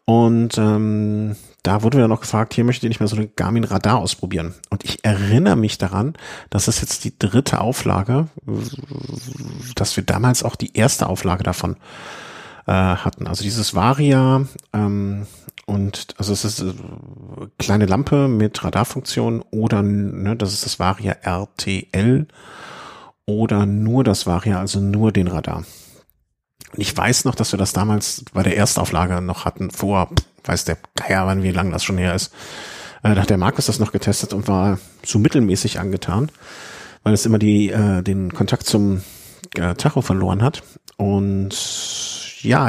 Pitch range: 95-120 Hz